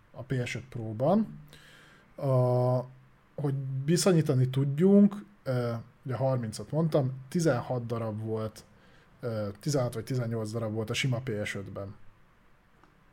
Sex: male